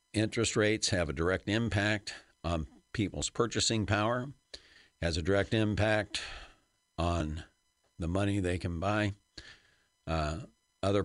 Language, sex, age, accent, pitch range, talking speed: English, male, 60-79, American, 85-110 Hz, 120 wpm